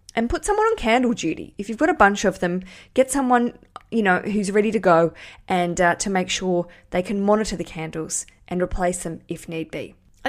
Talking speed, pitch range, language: 220 wpm, 180-225 Hz, English